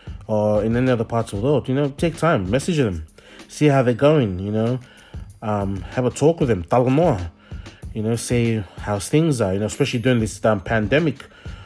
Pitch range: 110-140 Hz